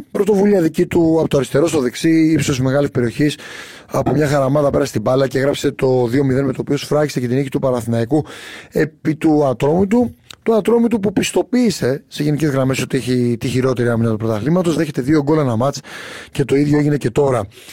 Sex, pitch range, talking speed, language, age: male, 125-165 Hz, 205 wpm, Greek, 30-49